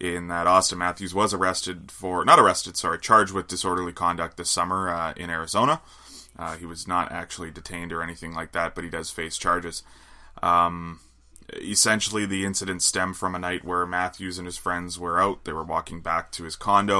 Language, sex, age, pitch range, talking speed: English, male, 20-39, 85-100 Hz, 200 wpm